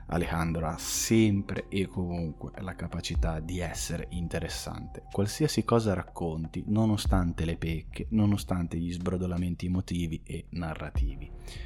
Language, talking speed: Italian, 115 wpm